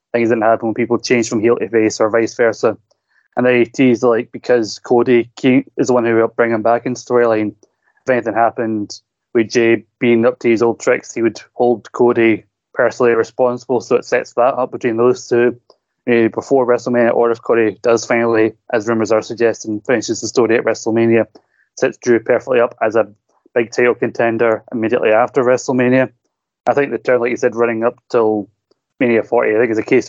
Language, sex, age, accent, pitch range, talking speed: English, male, 20-39, British, 115-125 Hz, 200 wpm